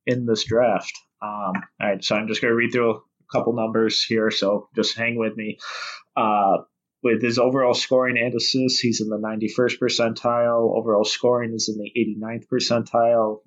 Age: 20-39